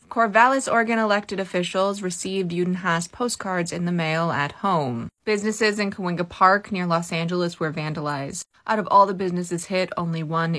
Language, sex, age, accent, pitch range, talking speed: English, female, 20-39, American, 170-220 Hz, 170 wpm